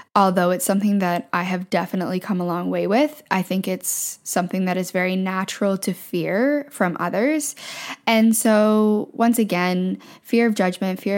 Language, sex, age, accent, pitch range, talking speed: English, female, 10-29, American, 180-210 Hz, 170 wpm